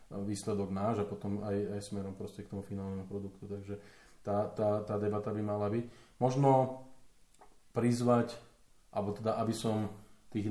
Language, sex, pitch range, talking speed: Slovak, male, 105-115 Hz, 155 wpm